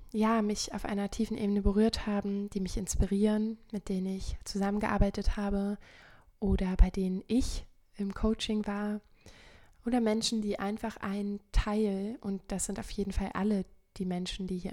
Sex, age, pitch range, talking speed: female, 20-39, 195-215 Hz, 165 wpm